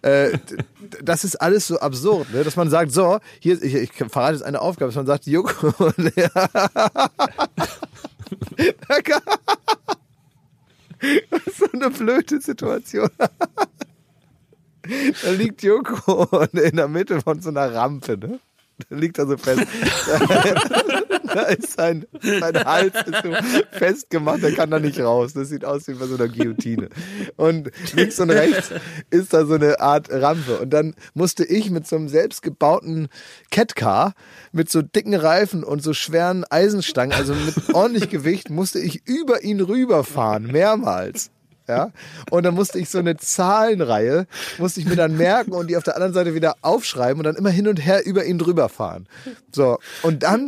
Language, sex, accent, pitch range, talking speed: German, male, German, 150-200 Hz, 155 wpm